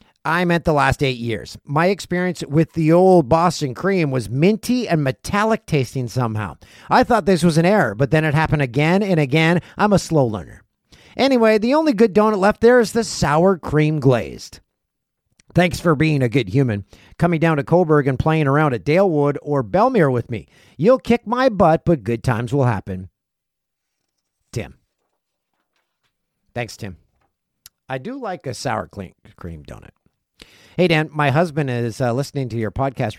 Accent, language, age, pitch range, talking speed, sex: American, English, 50-69, 130-185 Hz, 175 wpm, male